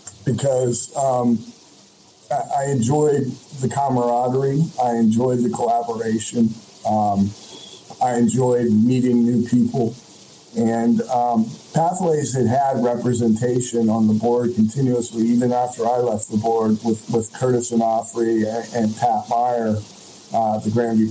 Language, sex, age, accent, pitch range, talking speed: English, male, 50-69, American, 110-125 Hz, 125 wpm